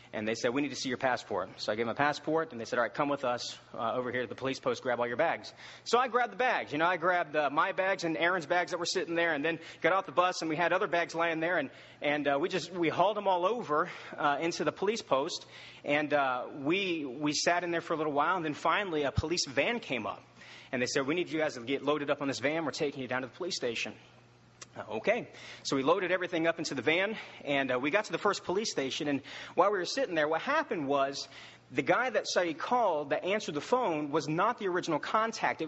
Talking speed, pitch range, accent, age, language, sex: 275 wpm, 140-175 Hz, American, 30-49, English, male